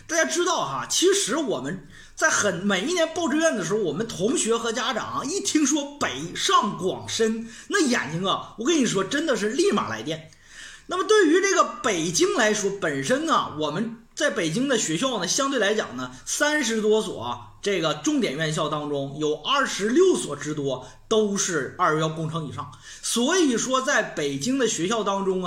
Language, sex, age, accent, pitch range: Chinese, male, 30-49, native, 185-300 Hz